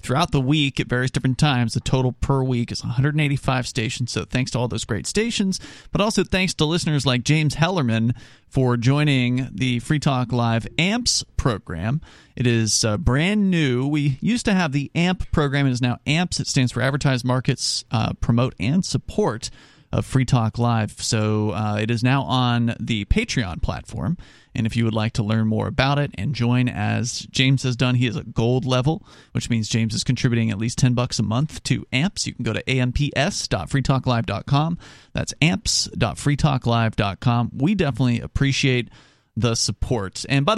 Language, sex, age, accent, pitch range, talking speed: English, male, 40-59, American, 115-145 Hz, 180 wpm